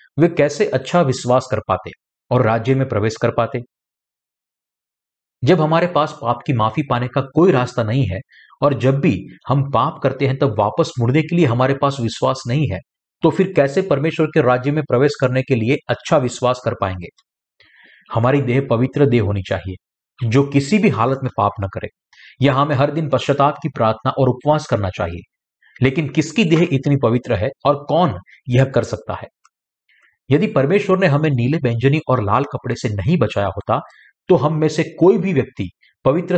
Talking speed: 190 wpm